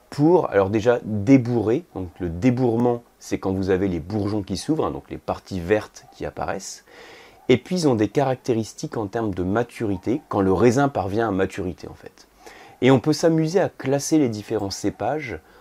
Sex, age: male, 30-49